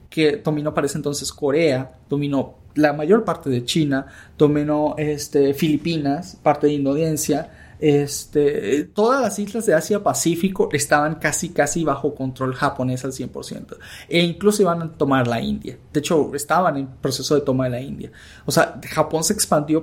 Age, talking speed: 30-49, 160 wpm